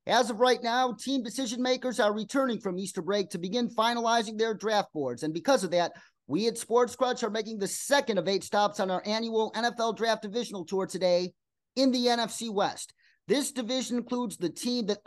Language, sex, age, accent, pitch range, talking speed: English, male, 30-49, American, 195-245 Hz, 200 wpm